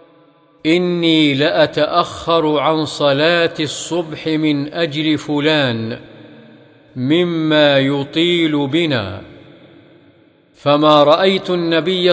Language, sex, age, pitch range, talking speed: Arabic, male, 50-69, 145-165 Hz, 70 wpm